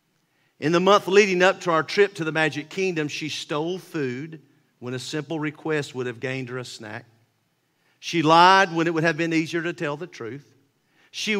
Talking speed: 200 wpm